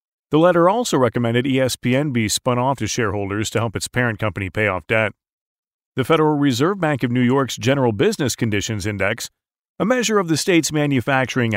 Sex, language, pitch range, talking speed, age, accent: male, English, 115-145 Hz, 180 wpm, 40-59, American